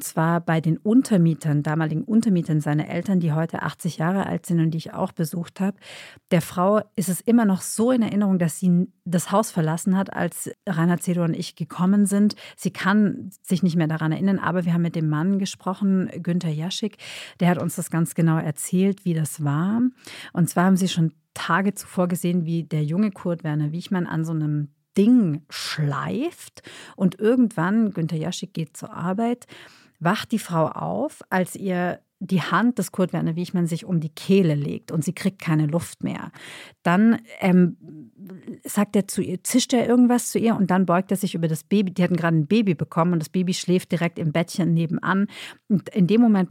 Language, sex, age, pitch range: German, female, 40-59, 165-200 Hz